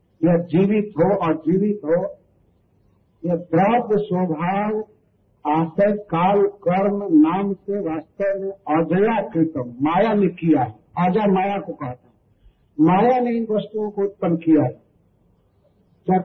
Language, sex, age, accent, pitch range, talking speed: Hindi, male, 50-69, native, 140-200 Hz, 135 wpm